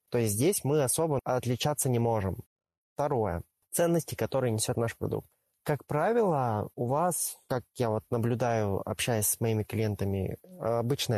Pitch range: 115-150 Hz